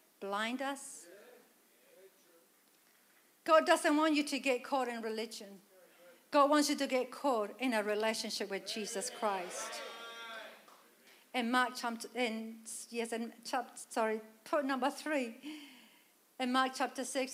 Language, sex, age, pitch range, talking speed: English, female, 50-69, 230-275 Hz, 130 wpm